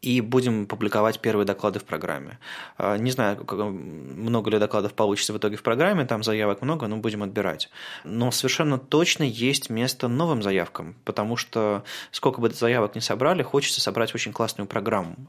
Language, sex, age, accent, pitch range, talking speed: Russian, male, 20-39, native, 105-130 Hz, 165 wpm